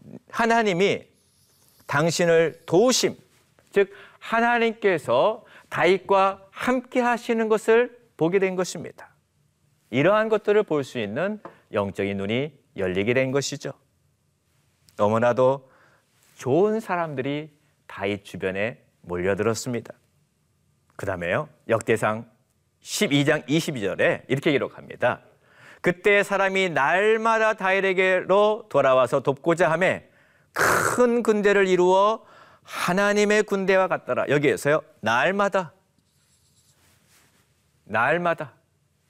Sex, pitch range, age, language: male, 130-210 Hz, 40-59, Korean